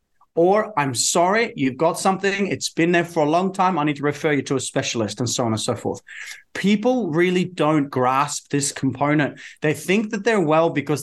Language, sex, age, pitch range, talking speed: English, male, 30-49, 145-195 Hz, 210 wpm